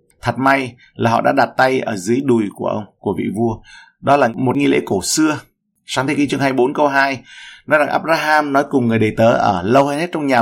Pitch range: 110-135 Hz